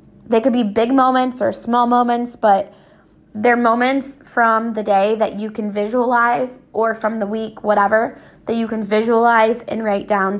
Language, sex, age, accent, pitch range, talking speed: English, female, 20-39, American, 195-230 Hz, 175 wpm